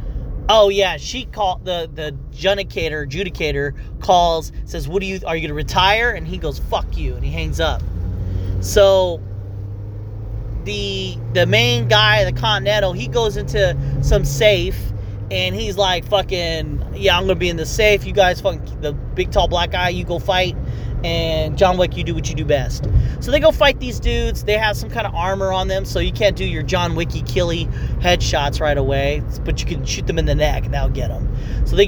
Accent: American